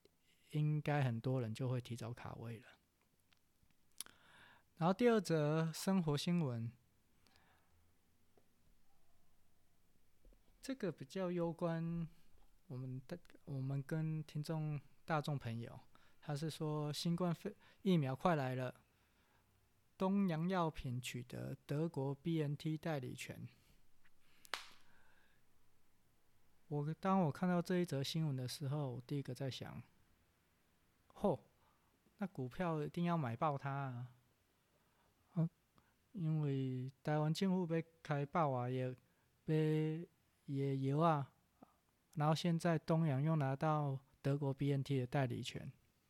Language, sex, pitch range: Chinese, male, 125-170 Hz